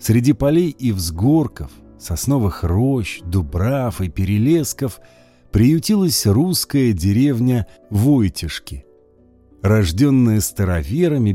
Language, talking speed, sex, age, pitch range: Russian, 80 wpm, male, 50-69, 95-135 Hz